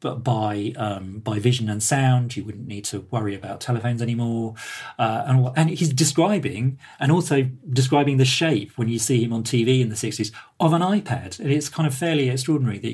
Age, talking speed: 40-59, 195 wpm